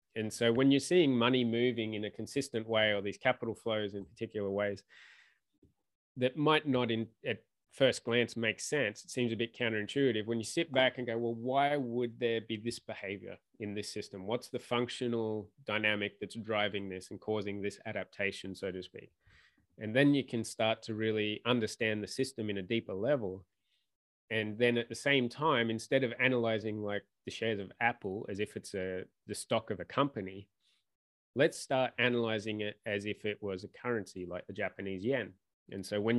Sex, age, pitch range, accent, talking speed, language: male, 20-39, 105-125 Hz, Australian, 190 wpm, English